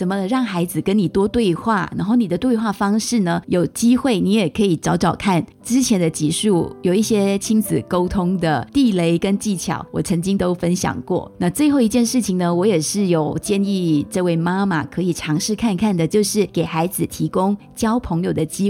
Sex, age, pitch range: female, 20-39, 170-225 Hz